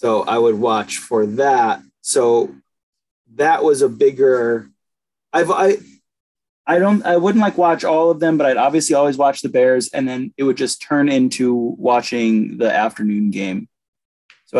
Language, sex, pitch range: English, male, 105-145 Hz